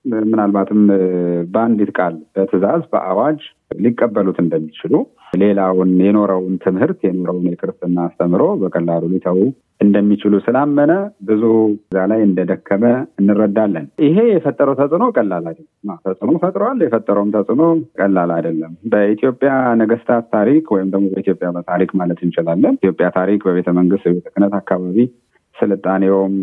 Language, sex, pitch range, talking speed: Amharic, male, 95-120 Hz, 105 wpm